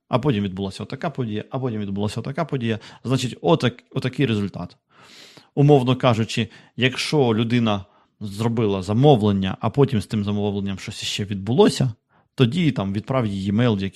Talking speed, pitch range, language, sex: 140 wpm, 110-135 Hz, Ukrainian, male